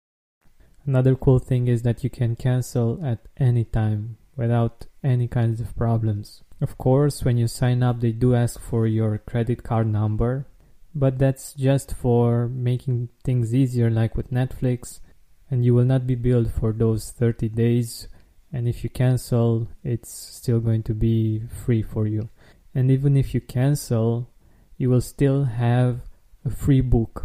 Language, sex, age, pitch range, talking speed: English, male, 20-39, 115-130 Hz, 165 wpm